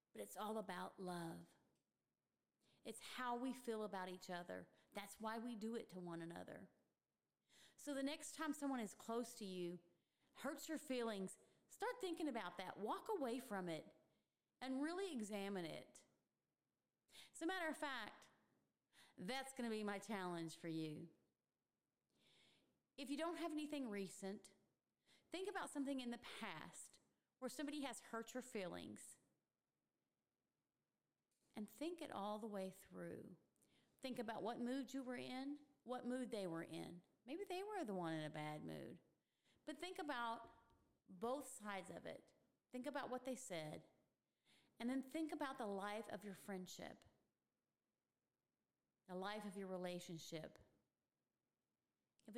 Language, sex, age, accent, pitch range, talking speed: English, female, 30-49, American, 190-265 Hz, 150 wpm